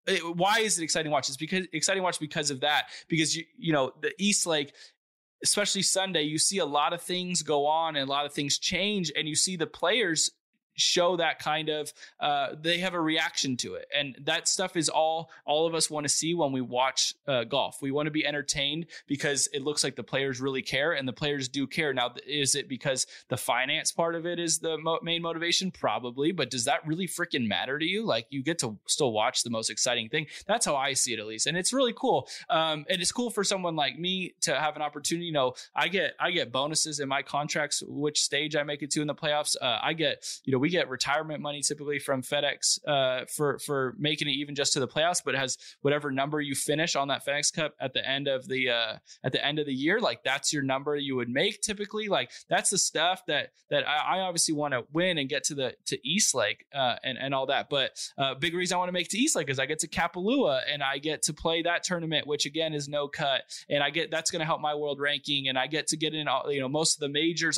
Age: 20-39